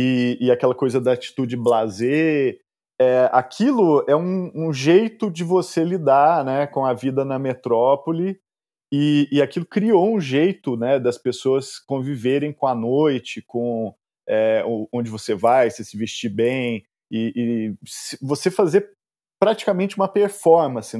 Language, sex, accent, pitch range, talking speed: Portuguese, male, Brazilian, 115-145 Hz, 150 wpm